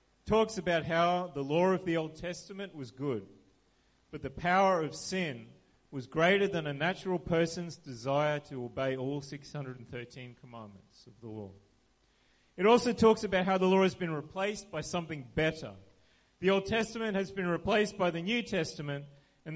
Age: 30-49